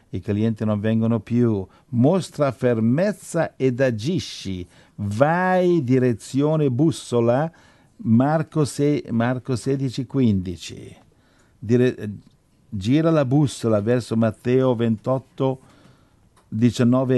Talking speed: 85 wpm